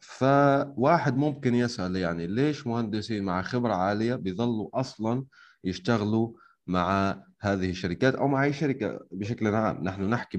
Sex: male